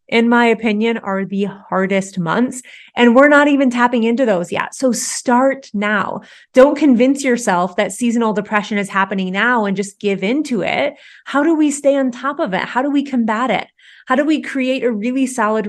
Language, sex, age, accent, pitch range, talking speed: English, female, 30-49, American, 195-245 Hz, 200 wpm